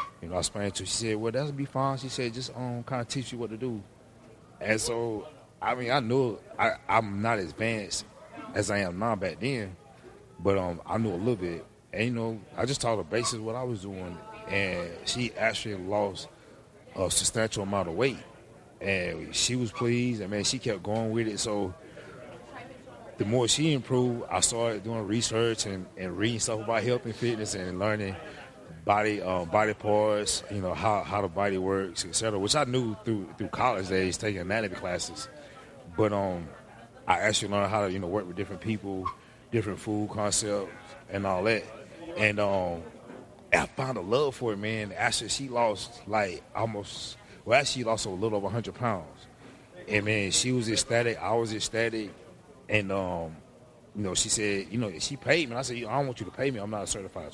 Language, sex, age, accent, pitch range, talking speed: English, male, 30-49, American, 100-115 Hz, 210 wpm